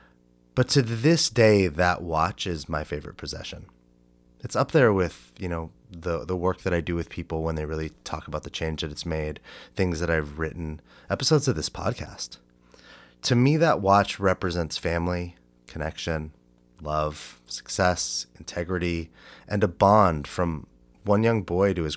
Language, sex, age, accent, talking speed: English, male, 30-49, American, 165 wpm